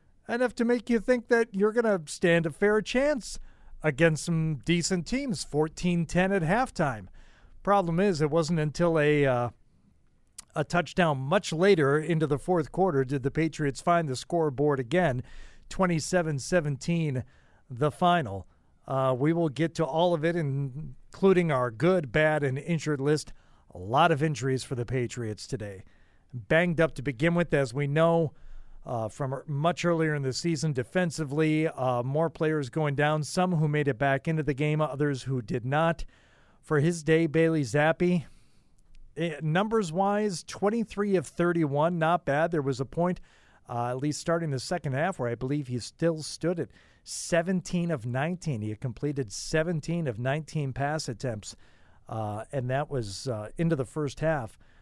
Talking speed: 165 wpm